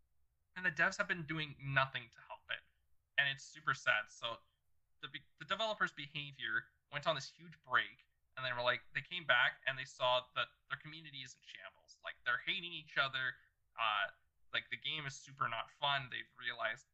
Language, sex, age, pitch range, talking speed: English, male, 20-39, 130-175 Hz, 195 wpm